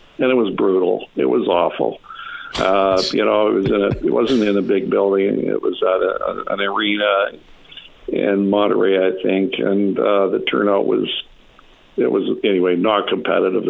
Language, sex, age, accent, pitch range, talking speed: English, male, 60-79, American, 95-105 Hz, 175 wpm